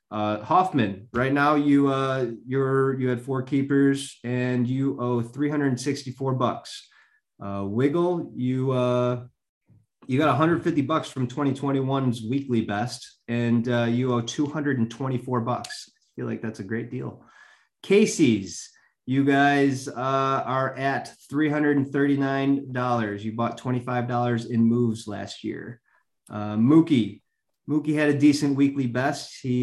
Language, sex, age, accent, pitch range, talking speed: English, male, 30-49, American, 120-140 Hz, 130 wpm